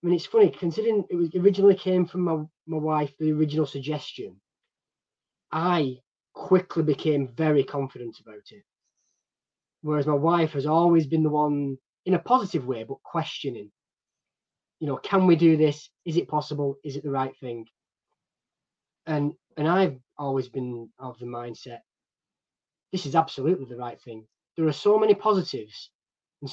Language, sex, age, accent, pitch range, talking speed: English, male, 20-39, British, 135-170 Hz, 160 wpm